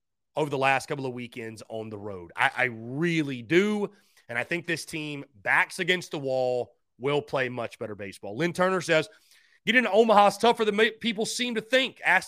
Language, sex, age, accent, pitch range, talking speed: English, male, 30-49, American, 140-215 Hz, 195 wpm